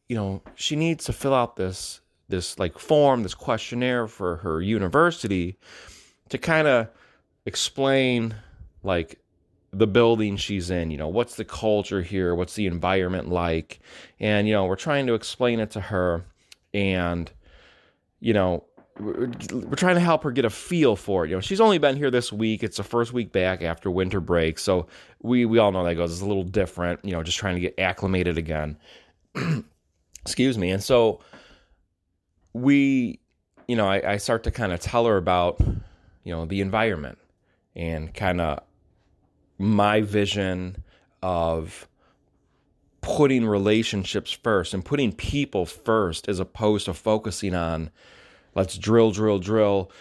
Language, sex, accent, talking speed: English, male, American, 160 wpm